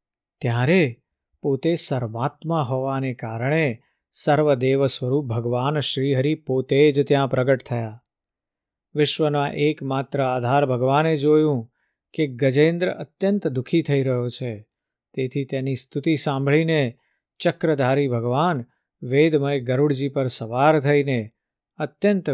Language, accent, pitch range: Gujarati, native, 125-150 Hz